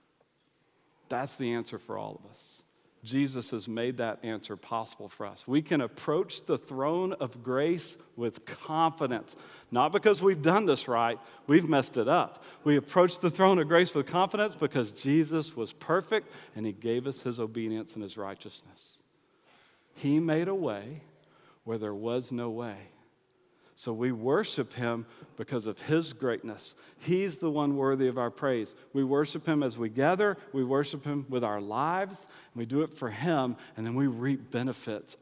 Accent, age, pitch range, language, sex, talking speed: American, 50-69, 120-165 Hz, English, male, 175 wpm